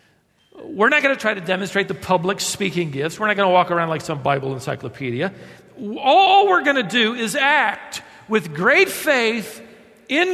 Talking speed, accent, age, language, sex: 185 wpm, American, 50-69, English, male